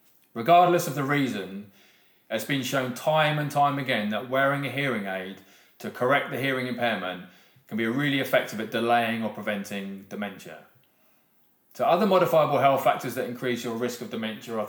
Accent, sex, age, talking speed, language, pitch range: British, male, 20-39, 170 wpm, English, 110-140 Hz